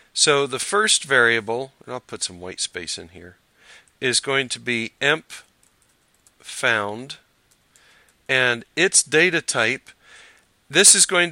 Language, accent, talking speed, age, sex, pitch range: English, American, 135 wpm, 50-69, male, 115-140 Hz